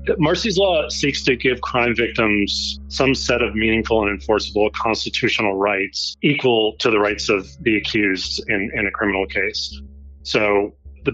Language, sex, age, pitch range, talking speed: English, male, 30-49, 75-105 Hz, 155 wpm